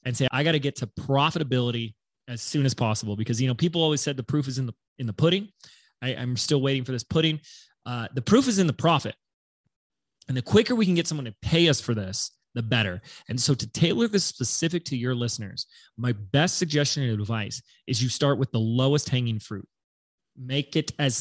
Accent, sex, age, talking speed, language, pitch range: American, male, 20-39, 225 wpm, English, 120-145 Hz